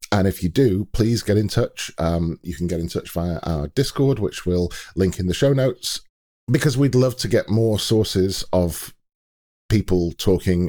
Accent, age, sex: British, 40-59, male